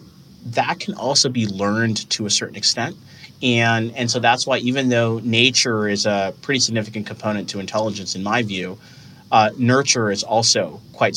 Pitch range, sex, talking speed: 110-130 Hz, male, 170 wpm